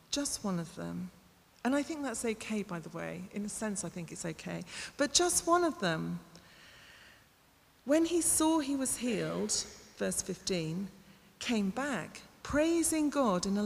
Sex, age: female, 40-59